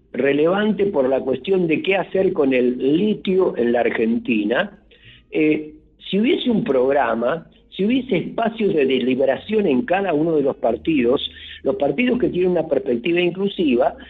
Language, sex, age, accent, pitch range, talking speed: Spanish, male, 50-69, Argentinian, 130-205 Hz, 155 wpm